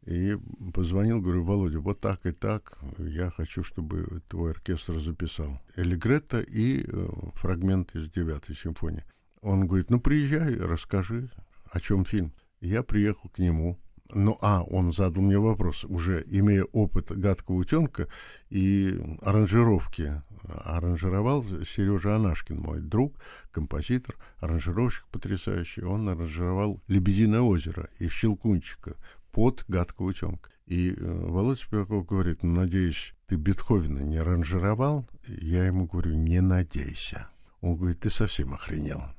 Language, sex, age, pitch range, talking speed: Russian, male, 60-79, 85-105 Hz, 125 wpm